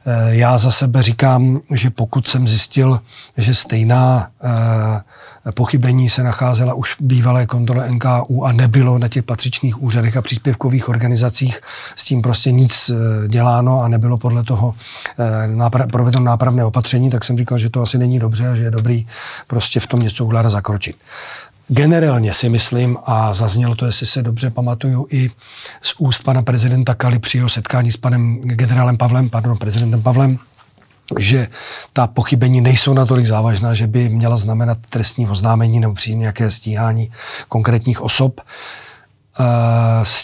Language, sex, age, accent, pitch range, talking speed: Czech, male, 40-59, native, 115-125 Hz, 150 wpm